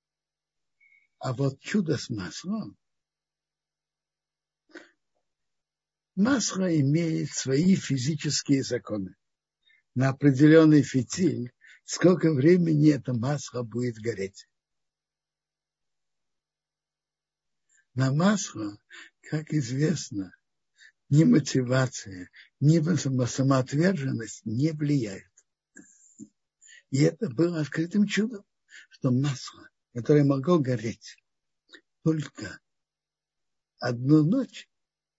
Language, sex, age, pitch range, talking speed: Russian, male, 60-79, 125-165 Hz, 70 wpm